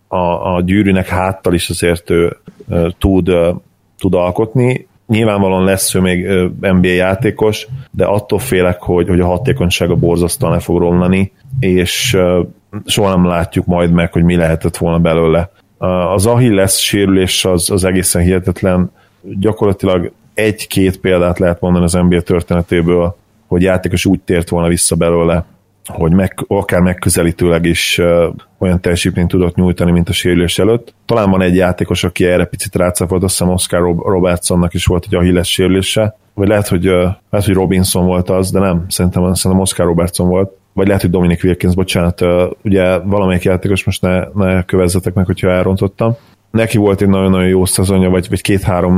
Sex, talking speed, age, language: male, 165 wpm, 30-49, Hungarian